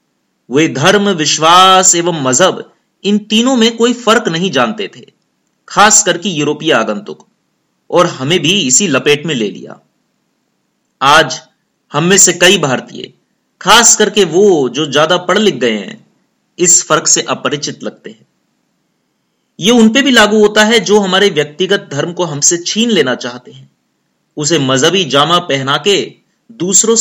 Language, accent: Hindi, native